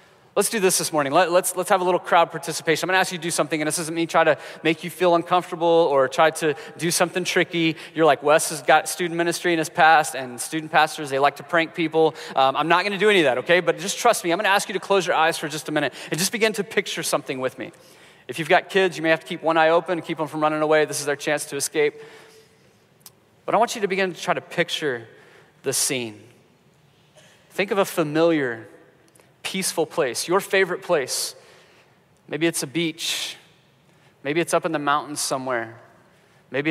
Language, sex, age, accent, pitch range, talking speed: English, male, 30-49, American, 145-180 Hz, 240 wpm